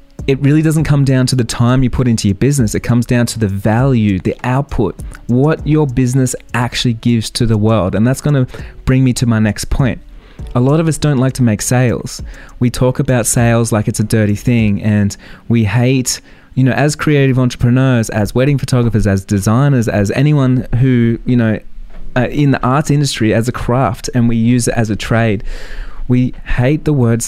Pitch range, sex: 110-130 Hz, male